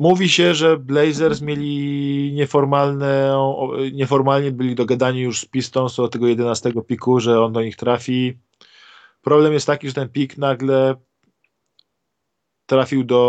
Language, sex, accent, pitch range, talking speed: Polish, male, native, 120-140 Hz, 130 wpm